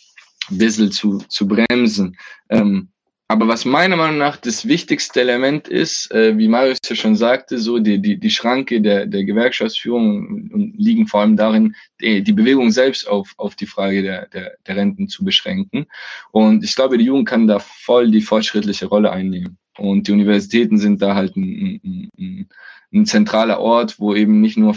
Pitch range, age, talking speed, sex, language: 100-145 Hz, 20-39, 180 wpm, male, German